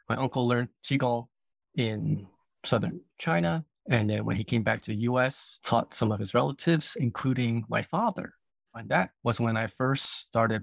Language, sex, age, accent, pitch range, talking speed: English, male, 20-39, American, 110-130 Hz, 175 wpm